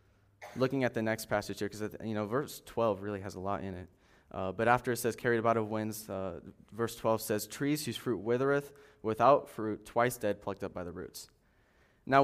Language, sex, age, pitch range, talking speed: English, male, 20-39, 105-120 Hz, 215 wpm